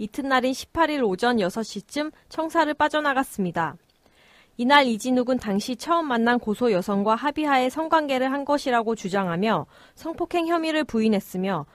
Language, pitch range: Korean, 210-275 Hz